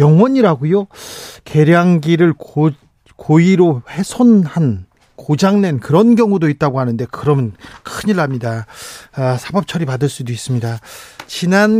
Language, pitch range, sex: Korean, 145-200 Hz, male